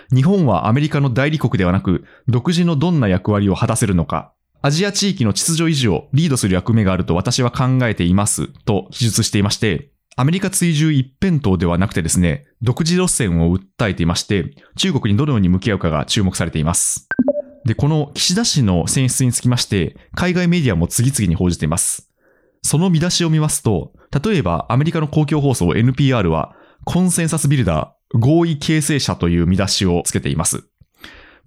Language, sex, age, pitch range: Japanese, male, 20-39, 95-155 Hz